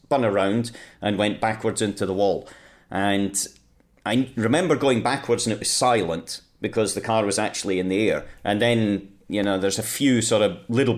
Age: 40-59